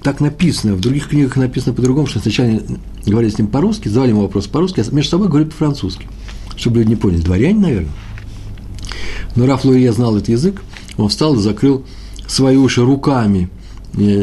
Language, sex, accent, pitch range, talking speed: Russian, male, native, 100-130 Hz, 185 wpm